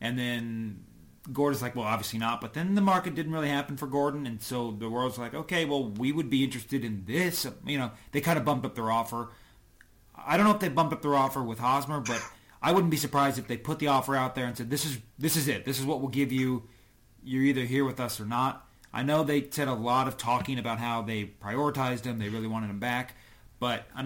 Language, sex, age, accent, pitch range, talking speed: English, male, 30-49, American, 110-140 Hz, 250 wpm